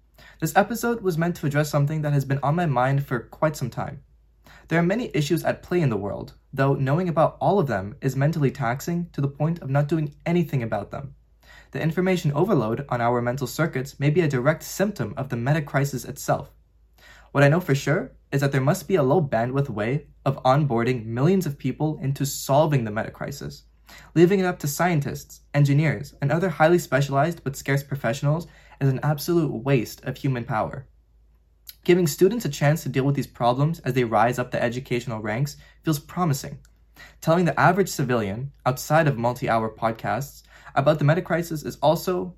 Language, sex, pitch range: English, male, 125-155 Hz